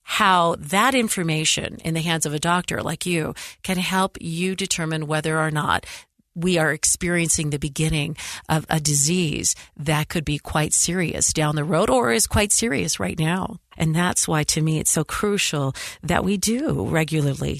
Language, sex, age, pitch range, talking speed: English, female, 40-59, 150-180 Hz, 175 wpm